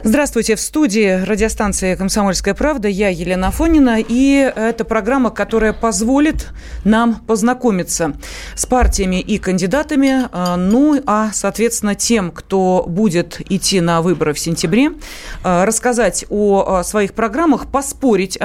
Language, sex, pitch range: Russian, female, 190-255 Hz